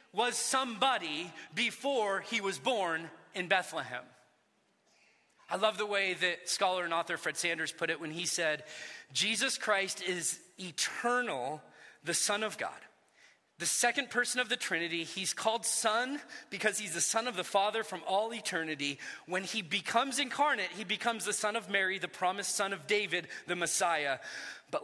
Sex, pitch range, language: male, 175-235 Hz, English